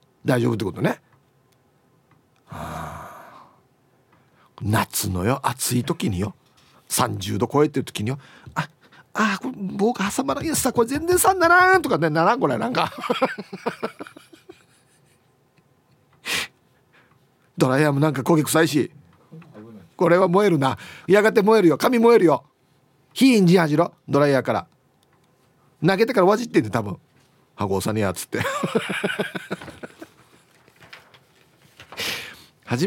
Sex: male